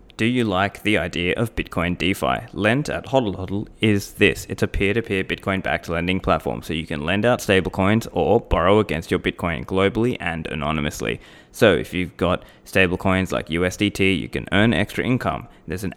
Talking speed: 185 wpm